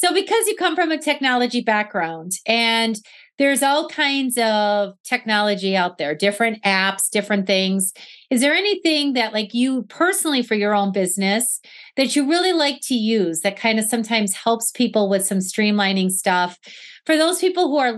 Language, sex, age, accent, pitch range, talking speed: English, female, 30-49, American, 200-265 Hz, 175 wpm